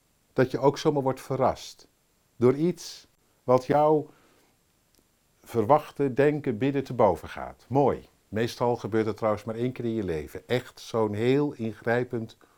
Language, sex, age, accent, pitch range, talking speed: Dutch, male, 50-69, Dutch, 105-140 Hz, 150 wpm